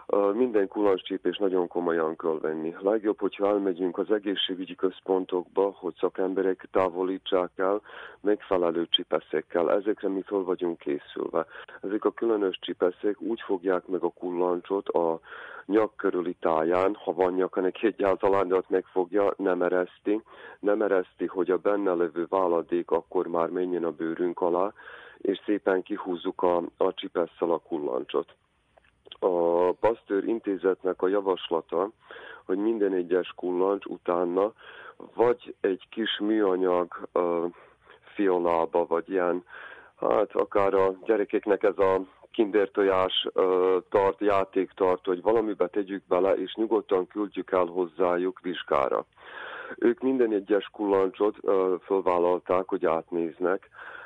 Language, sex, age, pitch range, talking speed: Hungarian, male, 40-59, 90-95 Hz, 125 wpm